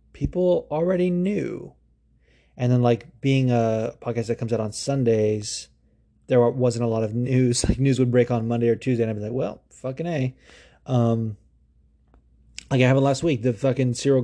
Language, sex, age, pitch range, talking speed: English, male, 30-49, 115-130 Hz, 190 wpm